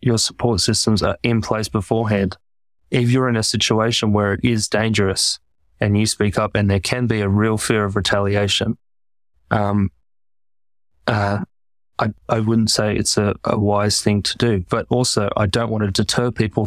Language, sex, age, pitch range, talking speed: English, male, 20-39, 100-115 Hz, 180 wpm